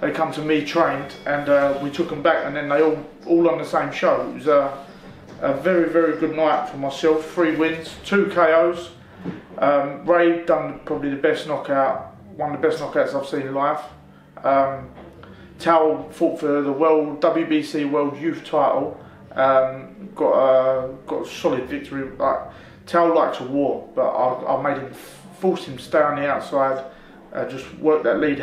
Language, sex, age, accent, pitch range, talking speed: English, male, 30-49, British, 140-170 Hz, 185 wpm